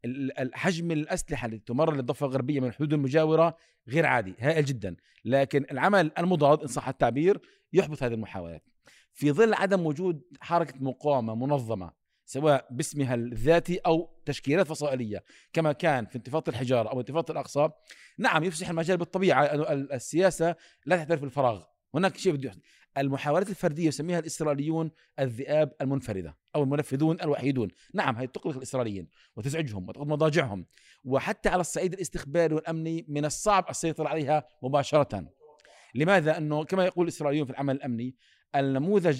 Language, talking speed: Arabic, 140 wpm